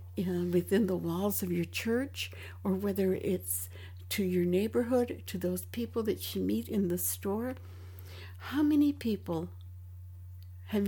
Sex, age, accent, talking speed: female, 60-79, American, 140 wpm